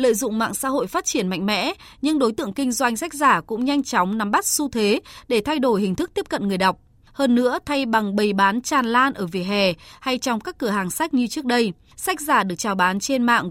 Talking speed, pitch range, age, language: 260 wpm, 205-275 Hz, 20-39, Vietnamese